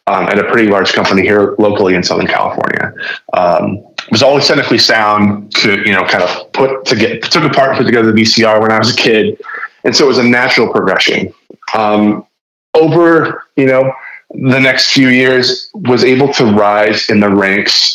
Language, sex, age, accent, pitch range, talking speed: English, male, 20-39, American, 100-125 Hz, 195 wpm